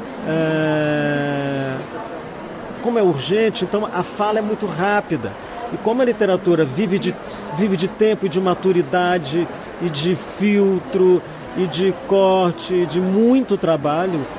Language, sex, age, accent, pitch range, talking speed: Portuguese, male, 40-59, Brazilian, 165-210 Hz, 130 wpm